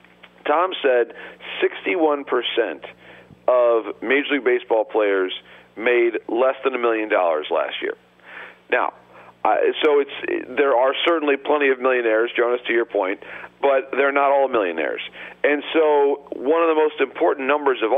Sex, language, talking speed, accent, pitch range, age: male, English, 145 wpm, American, 120-155 Hz, 50-69